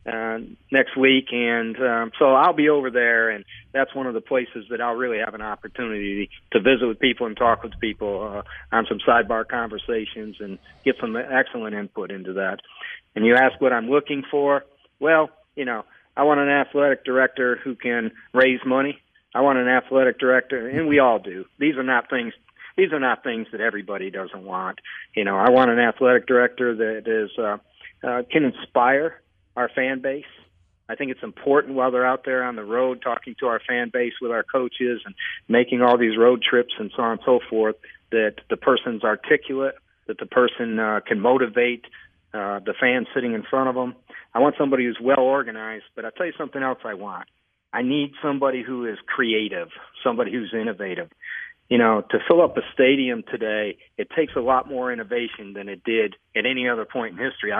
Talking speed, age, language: 200 wpm, 40-59, English